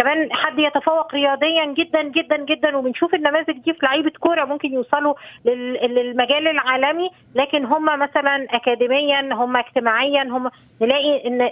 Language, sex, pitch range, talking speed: Arabic, female, 245-295 Hz, 135 wpm